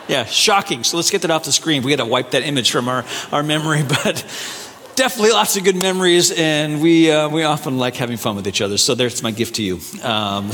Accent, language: American, English